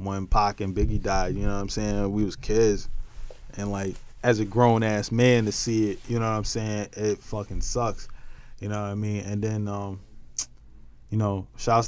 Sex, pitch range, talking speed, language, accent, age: male, 105-125 Hz, 210 wpm, English, American, 20-39